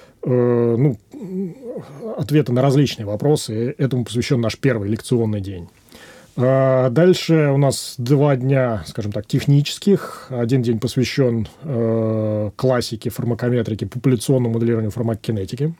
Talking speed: 105 wpm